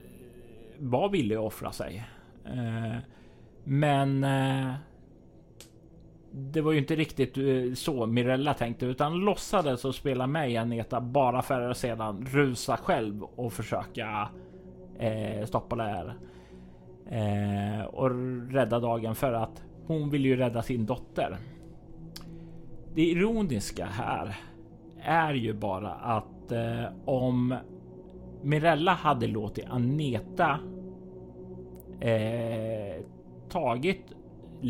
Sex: male